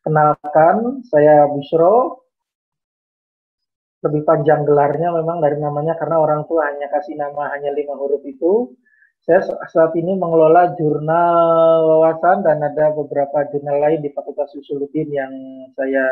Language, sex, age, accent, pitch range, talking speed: Indonesian, male, 30-49, native, 140-165 Hz, 130 wpm